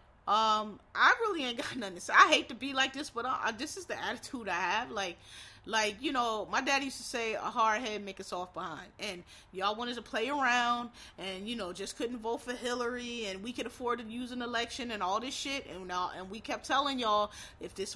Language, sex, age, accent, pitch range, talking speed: English, female, 30-49, American, 215-265 Hz, 245 wpm